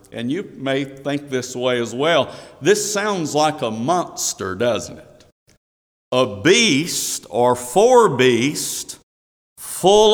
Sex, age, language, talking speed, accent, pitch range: male, 50-69, English, 125 wpm, American, 140-185 Hz